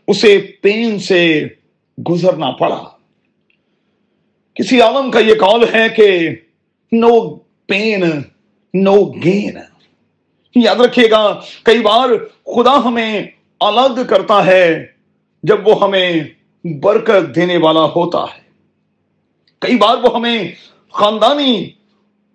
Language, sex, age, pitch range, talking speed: Urdu, male, 40-59, 180-220 Hz, 60 wpm